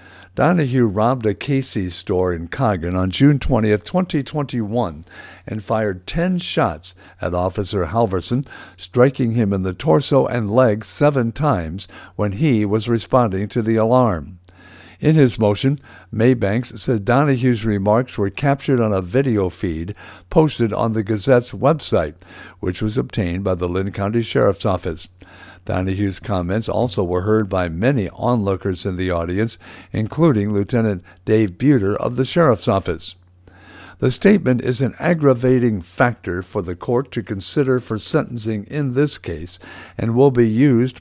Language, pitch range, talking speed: English, 95-125 Hz, 145 wpm